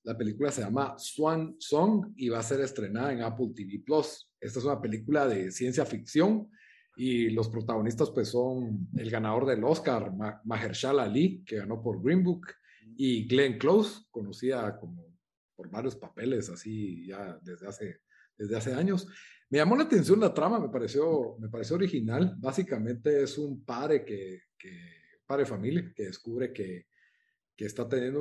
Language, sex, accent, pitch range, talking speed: Spanish, male, Mexican, 110-155 Hz, 165 wpm